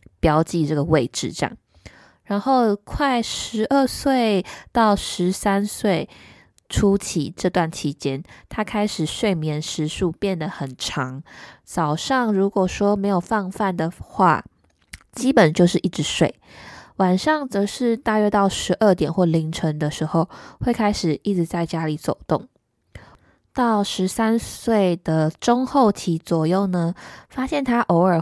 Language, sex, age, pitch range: Chinese, female, 20-39, 165-215 Hz